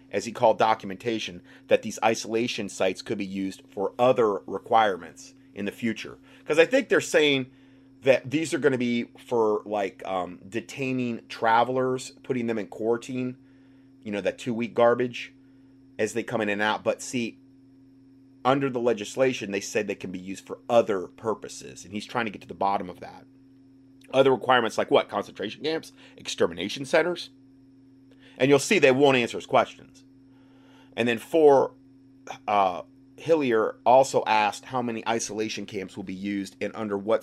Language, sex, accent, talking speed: English, male, American, 170 wpm